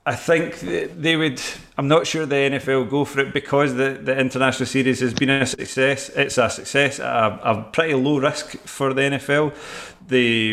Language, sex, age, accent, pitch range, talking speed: English, male, 30-49, British, 115-135 Hz, 195 wpm